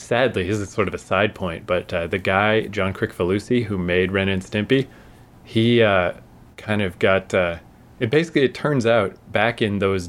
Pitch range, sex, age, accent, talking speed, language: 95-120 Hz, male, 30-49, American, 195 wpm, English